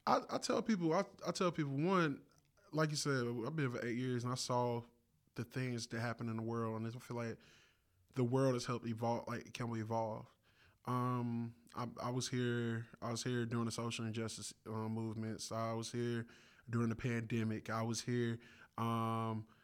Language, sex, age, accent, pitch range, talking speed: English, male, 20-39, American, 115-125 Hz, 200 wpm